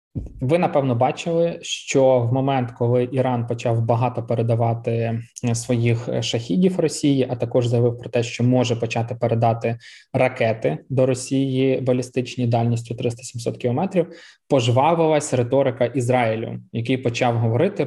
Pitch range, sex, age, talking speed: 120-145 Hz, male, 20-39, 120 wpm